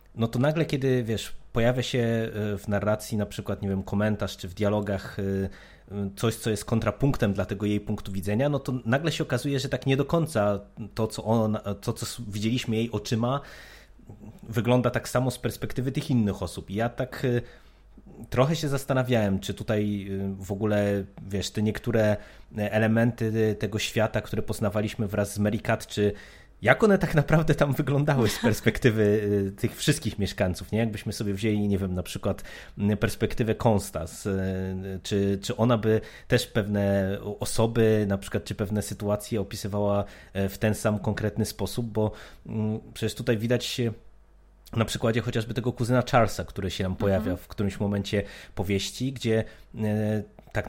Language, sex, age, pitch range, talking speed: Polish, male, 20-39, 100-120 Hz, 160 wpm